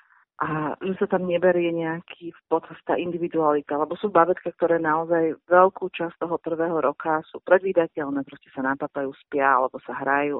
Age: 40-59